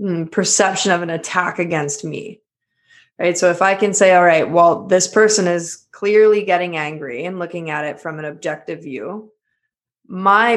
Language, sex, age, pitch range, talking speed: English, female, 20-39, 165-195 Hz, 170 wpm